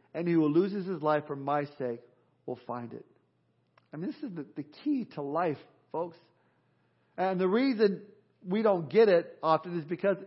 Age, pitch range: 50-69, 155-210 Hz